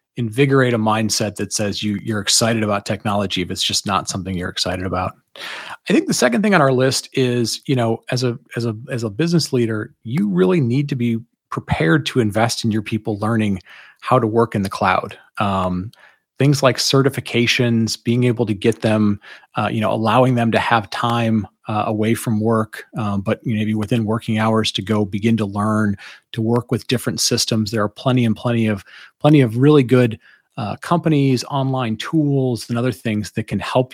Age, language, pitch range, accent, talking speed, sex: 30-49, English, 105-125 Hz, American, 200 wpm, male